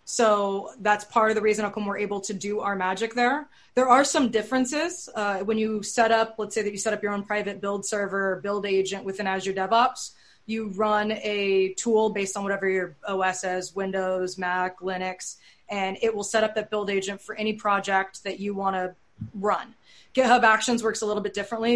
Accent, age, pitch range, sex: American, 20-39, 190-220 Hz, female